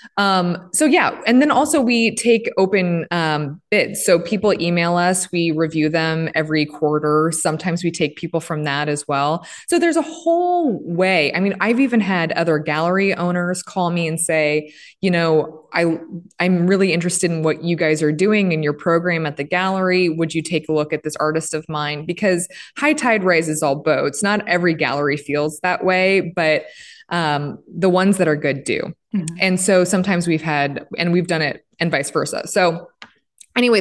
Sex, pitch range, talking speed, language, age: female, 155-190 Hz, 190 wpm, English, 20-39